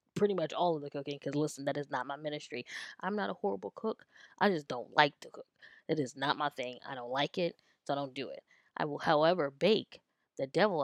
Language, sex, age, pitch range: English, female, 20-39, 145-200 Hz